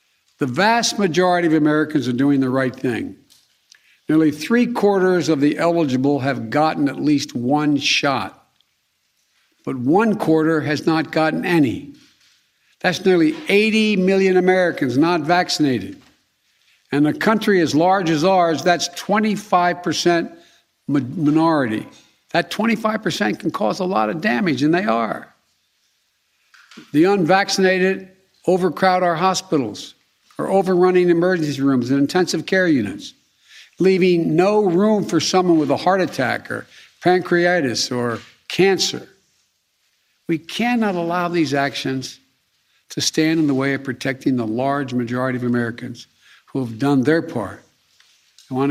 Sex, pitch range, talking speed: male, 140-185 Hz, 135 wpm